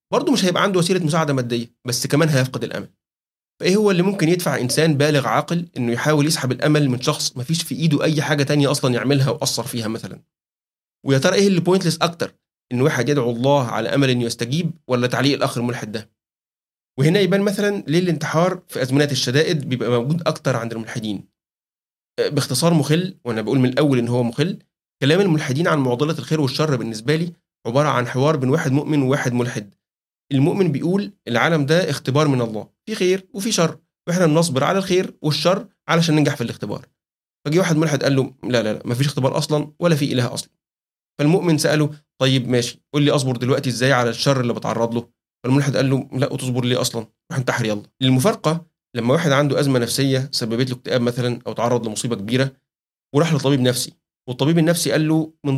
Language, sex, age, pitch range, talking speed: Arabic, male, 30-49, 125-160 Hz, 190 wpm